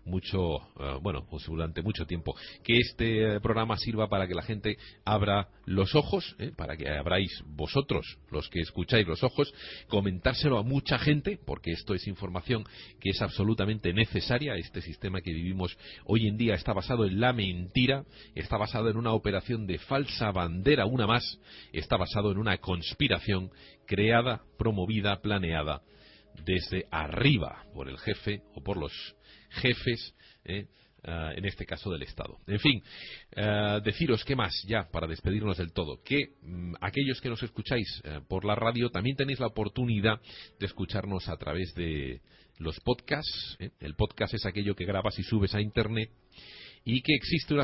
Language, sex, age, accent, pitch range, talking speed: Spanish, male, 40-59, Spanish, 90-115 Hz, 165 wpm